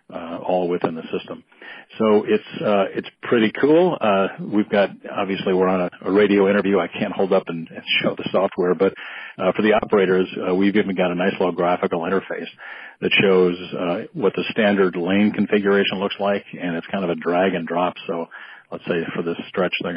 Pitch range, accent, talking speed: 85-100 Hz, American, 205 wpm